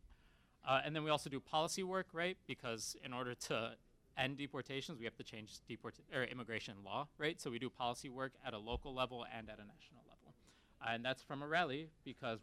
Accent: American